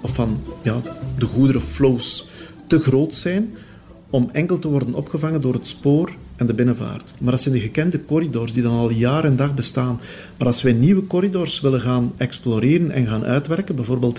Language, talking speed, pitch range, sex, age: Dutch, 185 wpm, 120-155 Hz, male, 40-59